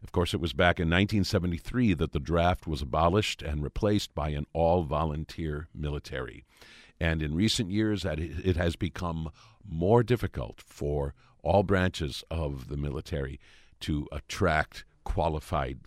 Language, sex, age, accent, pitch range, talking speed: English, male, 50-69, American, 75-100 Hz, 135 wpm